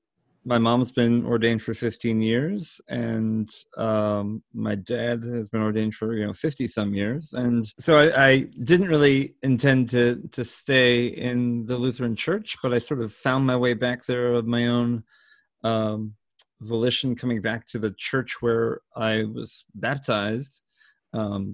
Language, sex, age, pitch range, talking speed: English, male, 30-49, 105-120 Hz, 165 wpm